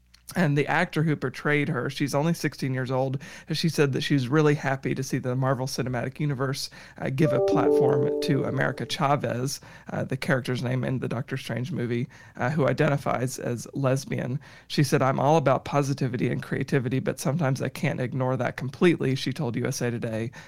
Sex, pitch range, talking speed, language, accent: male, 125-145 Hz, 190 wpm, English, American